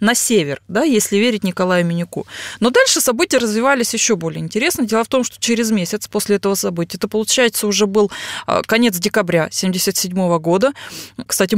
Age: 20-39